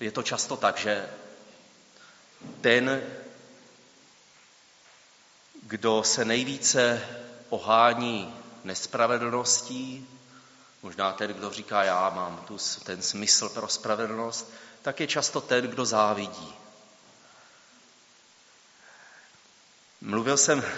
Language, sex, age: Czech, male, 30-49